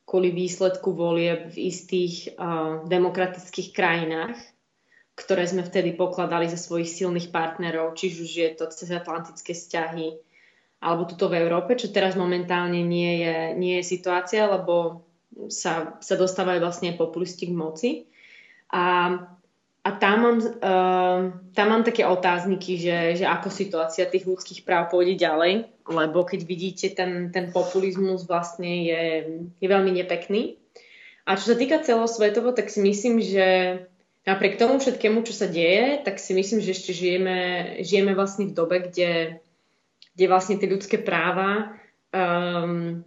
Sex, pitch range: female, 170-195 Hz